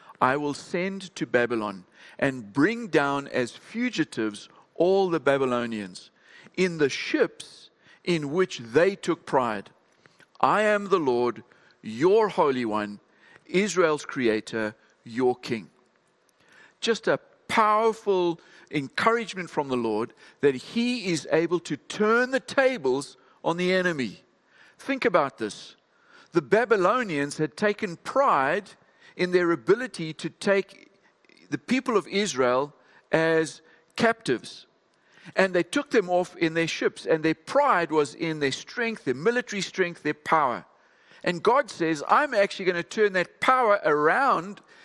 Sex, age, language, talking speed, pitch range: male, 50-69, English, 135 wpm, 150-210 Hz